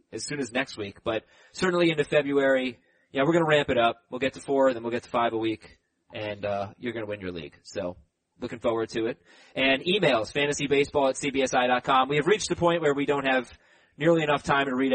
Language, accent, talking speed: English, American, 235 wpm